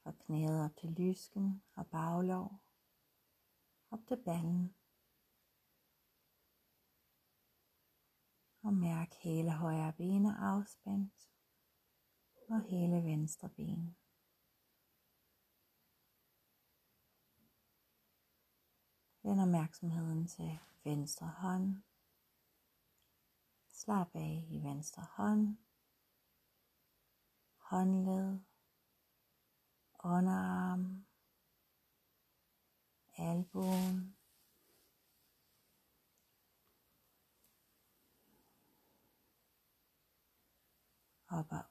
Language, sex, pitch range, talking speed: Danish, female, 165-195 Hz, 50 wpm